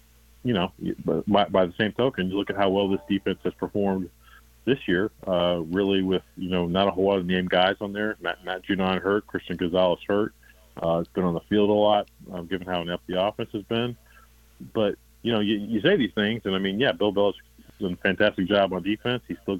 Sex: male